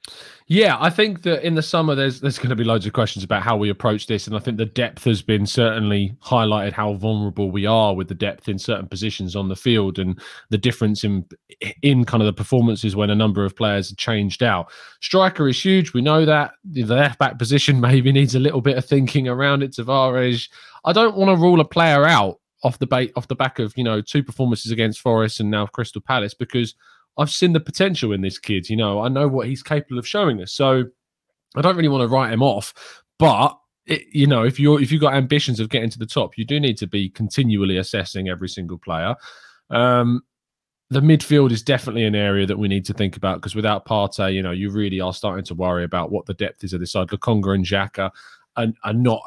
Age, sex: 20-39, male